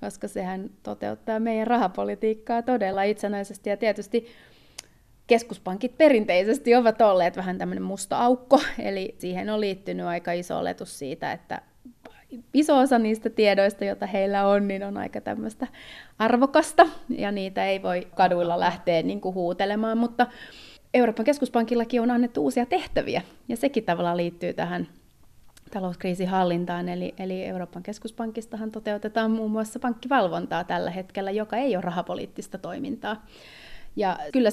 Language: Finnish